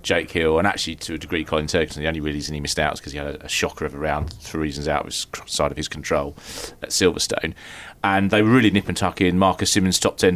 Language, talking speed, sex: English, 265 wpm, male